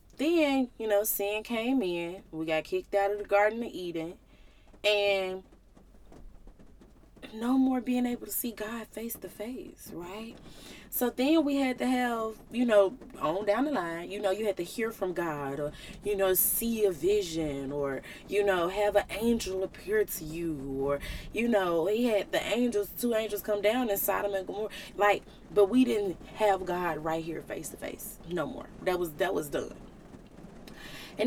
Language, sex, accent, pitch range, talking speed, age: English, female, American, 185-240 Hz, 185 wpm, 20-39